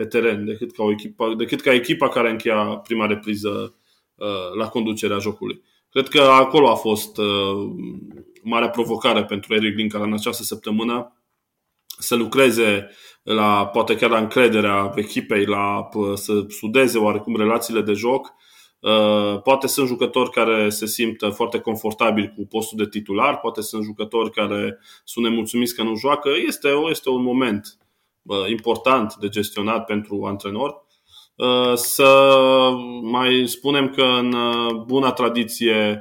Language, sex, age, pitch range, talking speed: Romanian, male, 20-39, 105-120 Hz, 140 wpm